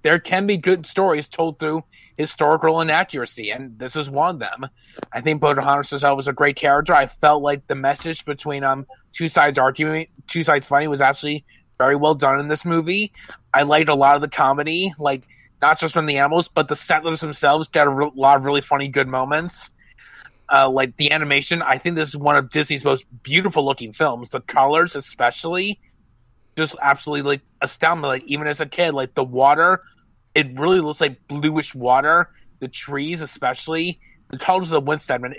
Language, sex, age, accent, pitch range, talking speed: English, male, 30-49, American, 135-160 Hz, 190 wpm